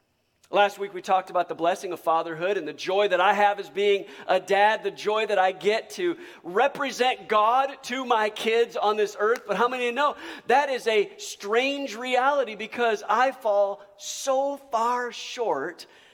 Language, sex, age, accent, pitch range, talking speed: English, male, 50-69, American, 185-250 Hz, 180 wpm